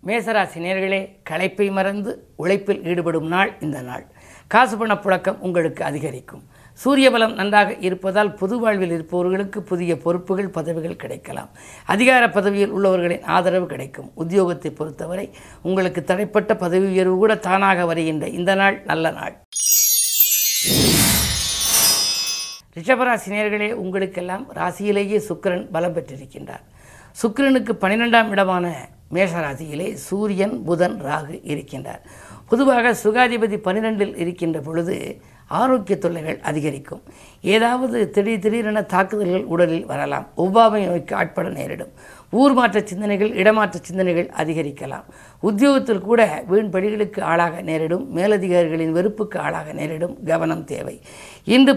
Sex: female